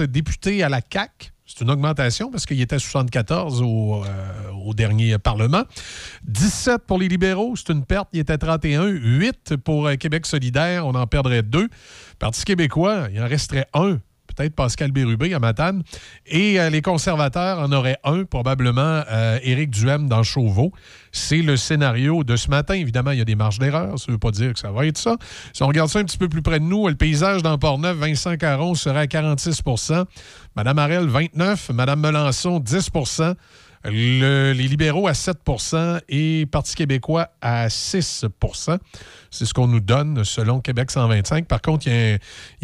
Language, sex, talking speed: French, male, 185 wpm